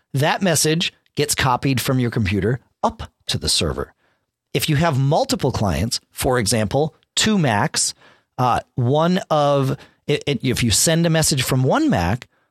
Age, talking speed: 40-59, 160 wpm